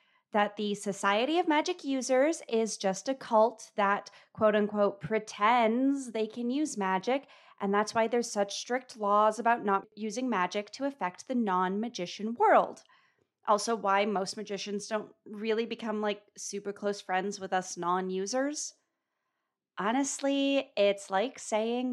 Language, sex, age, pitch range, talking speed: English, female, 30-49, 200-300 Hz, 140 wpm